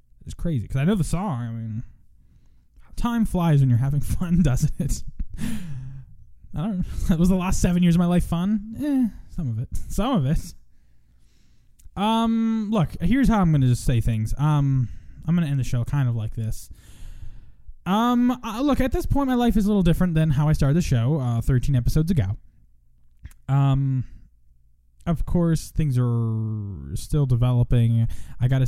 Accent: American